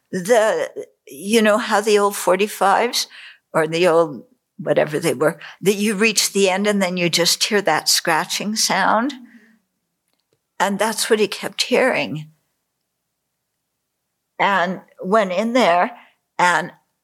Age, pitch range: 60-79, 175-225 Hz